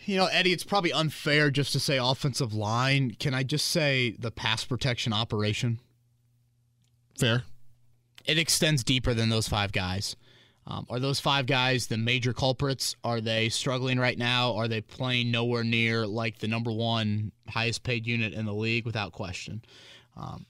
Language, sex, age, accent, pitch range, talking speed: English, male, 30-49, American, 120-155 Hz, 170 wpm